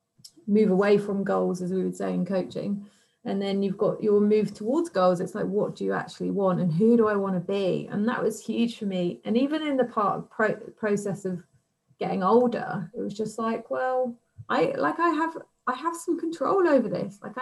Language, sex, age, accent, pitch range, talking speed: English, female, 30-49, British, 175-210 Hz, 225 wpm